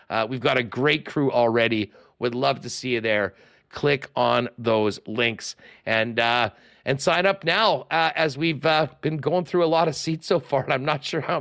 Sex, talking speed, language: male, 215 wpm, English